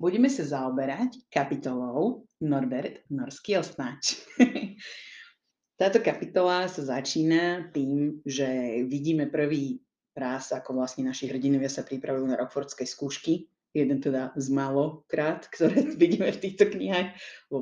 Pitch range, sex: 135-170 Hz, female